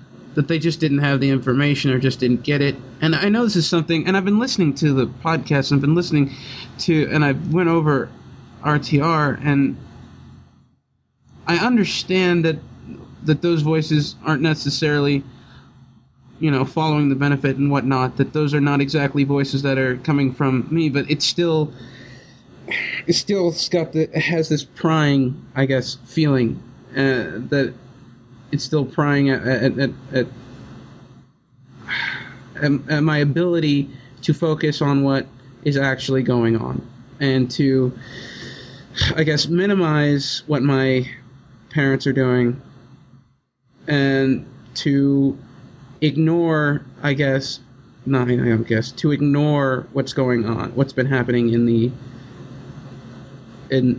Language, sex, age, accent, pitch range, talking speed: English, male, 30-49, American, 130-150 Hz, 140 wpm